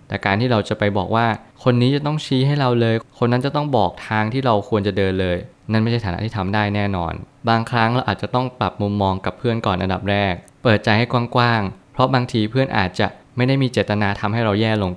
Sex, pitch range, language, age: male, 100-120 Hz, Thai, 20-39